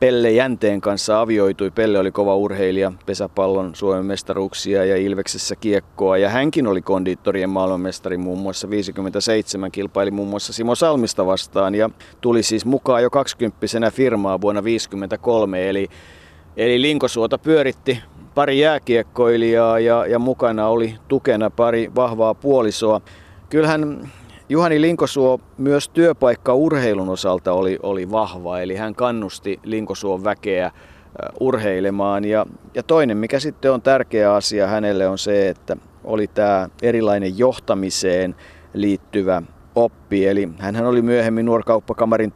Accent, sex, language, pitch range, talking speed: native, male, Finnish, 95-120 Hz, 125 wpm